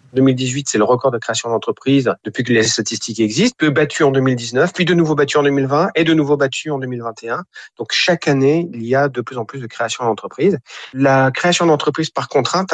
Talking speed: 215 wpm